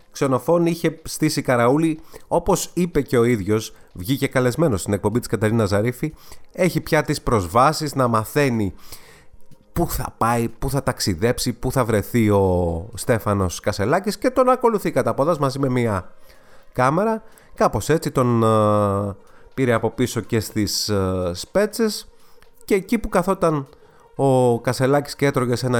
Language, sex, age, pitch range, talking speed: Greek, male, 30-49, 110-165 Hz, 135 wpm